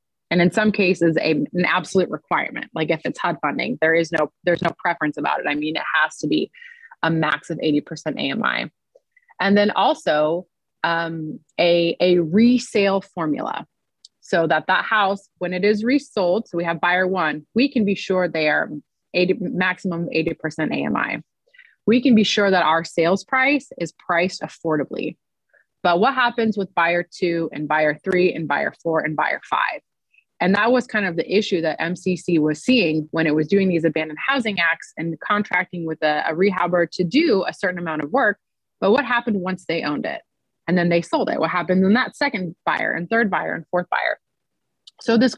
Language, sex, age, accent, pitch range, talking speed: English, female, 30-49, American, 165-215 Hz, 195 wpm